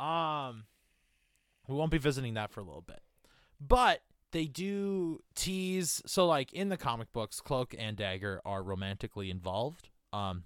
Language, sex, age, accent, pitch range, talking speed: English, male, 20-39, American, 105-165 Hz, 155 wpm